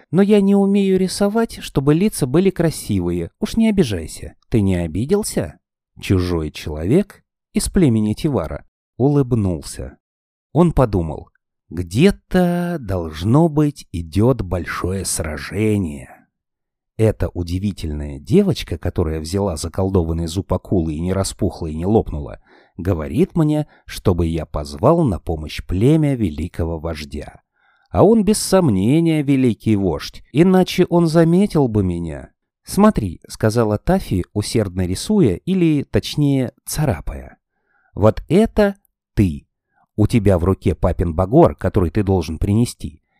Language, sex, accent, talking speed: Russian, male, native, 120 wpm